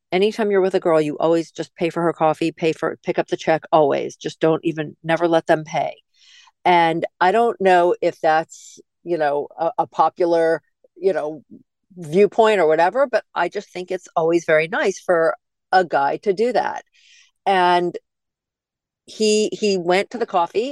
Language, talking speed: English, 180 wpm